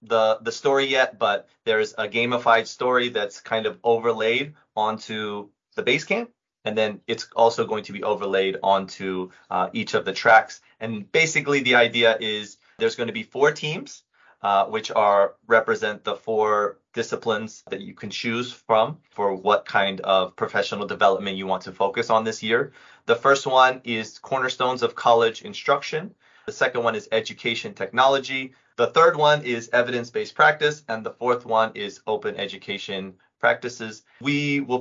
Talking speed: 170 wpm